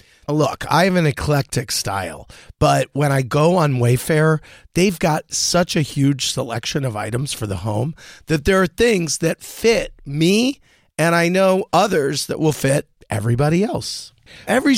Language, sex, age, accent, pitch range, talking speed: English, male, 40-59, American, 125-180 Hz, 160 wpm